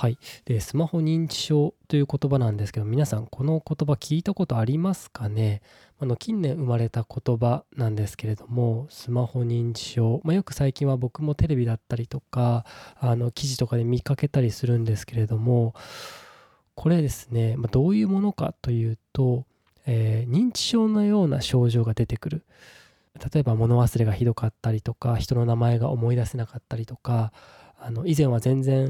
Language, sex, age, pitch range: Japanese, male, 20-39, 115-150 Hz